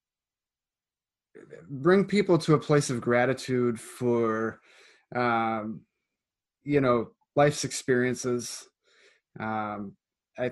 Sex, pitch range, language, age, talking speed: male, 120-145 Hz, English, 20-39, 85 wpm